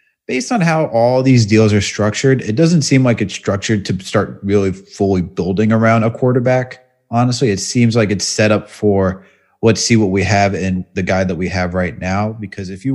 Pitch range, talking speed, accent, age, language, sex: 100-125 Hz, 215 wpm, American, 30-49, English, male